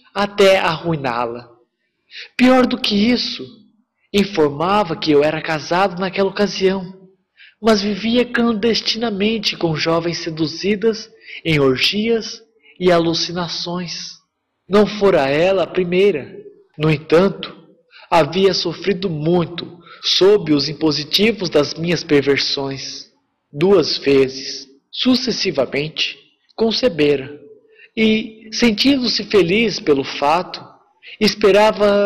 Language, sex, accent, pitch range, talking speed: Portuguese, male, Brazilian, 165-225 Hz, 90 wpm